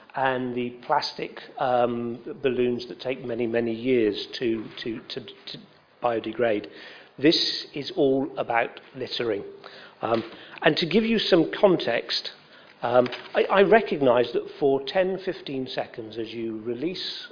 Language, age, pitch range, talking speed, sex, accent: English, 50-69, 125-205 Hz, 135 wpm, male, British